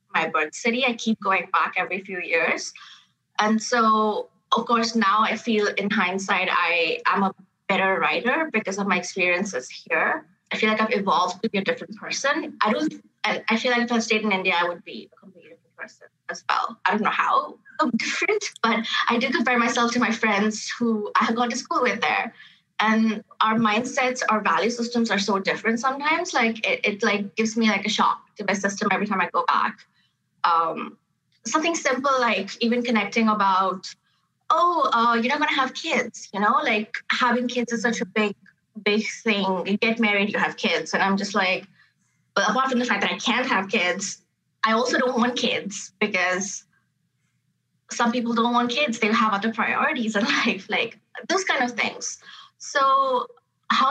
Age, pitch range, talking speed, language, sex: 20-39, 195-245 Hz, 195 wpm, English, female